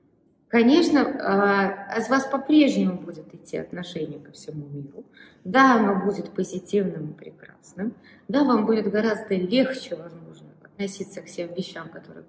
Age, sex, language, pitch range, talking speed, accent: 20-39, female, Russian, 185-245 Hz, 130 wpm, native